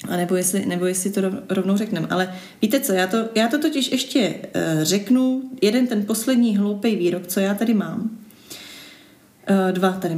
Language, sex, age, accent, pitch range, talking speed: Czech, female, 30-49, native, 175-220 Hz, 185 wpm